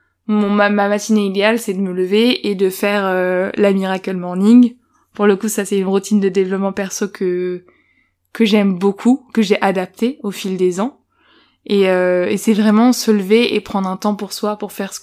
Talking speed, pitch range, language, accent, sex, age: 210 wpm, 190-220 Hz, French, French, female, 20-39